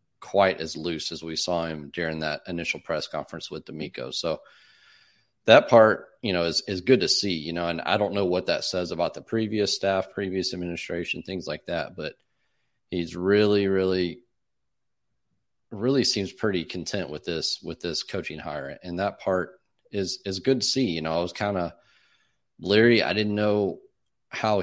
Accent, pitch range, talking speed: American, 85-100 Hz, 185 wpm